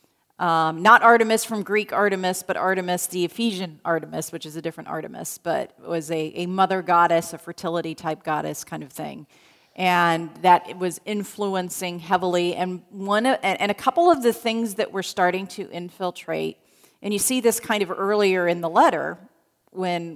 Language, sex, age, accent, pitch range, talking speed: English, female, 40-59, American, 170-215 Hz, 170 wpm